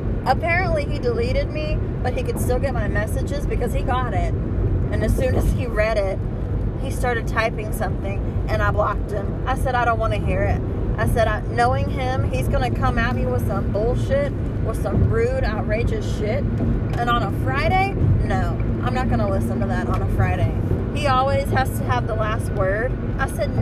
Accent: American